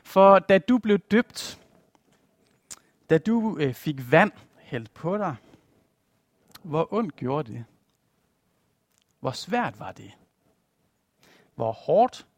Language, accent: Danish, native